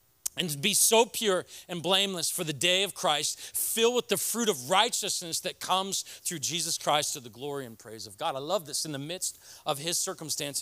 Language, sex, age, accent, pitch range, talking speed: English, male, 40-59, American, 155-205 Hz, 215 wpm